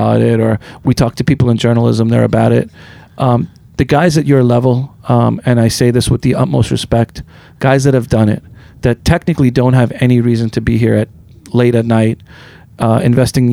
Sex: male